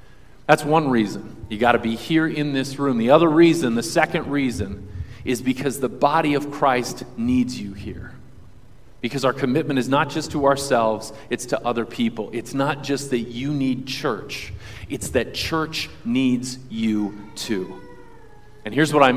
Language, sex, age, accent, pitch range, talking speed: English, male, 40-59, American, 120-160 Hz, 170 wpm